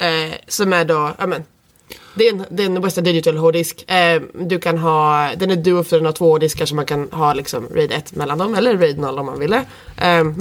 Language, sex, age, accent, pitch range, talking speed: Swedish, female, 20-39, native, 160-195 Hz, 230 wpm